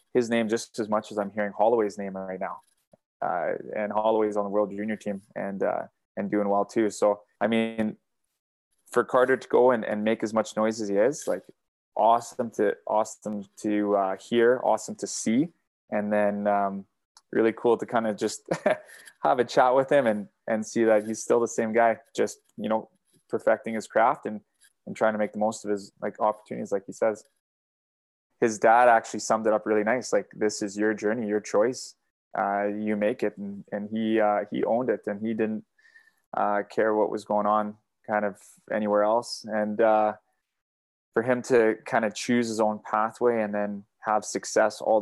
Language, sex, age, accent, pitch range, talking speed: English, male, 20-39, Canadian, 105-110 Hz, 200 wpm